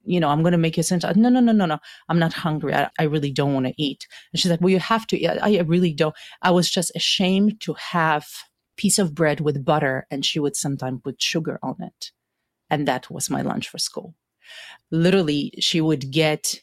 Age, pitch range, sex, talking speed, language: 30-49, 145-175 Hz, female, 240 wpm, English